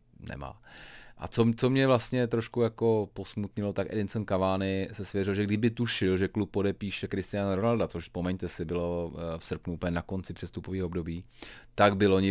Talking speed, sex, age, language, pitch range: 175 wpm, male, 30-49, Czech, 85-105 Hz